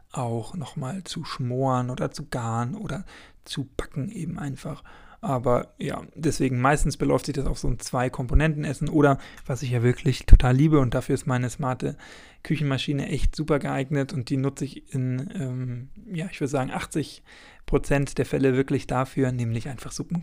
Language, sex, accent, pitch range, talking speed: German, male, German, 130-150 Hz, 170 wpm